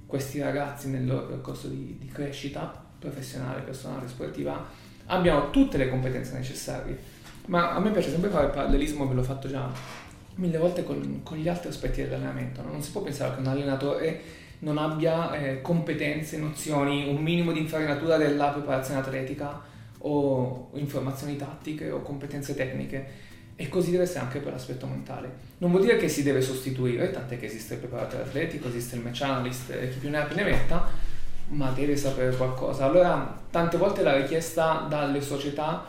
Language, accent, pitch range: Italian, native, 130-155 Hz